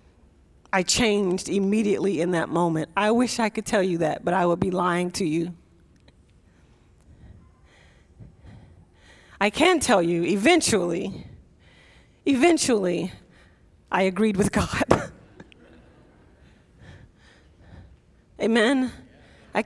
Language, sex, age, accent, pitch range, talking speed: English, female, 40-59, American, 175-250 Hz, 100 wpm